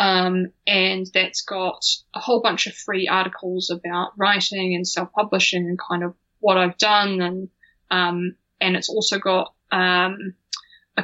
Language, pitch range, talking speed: English, 185-230 Hz, 150 wpm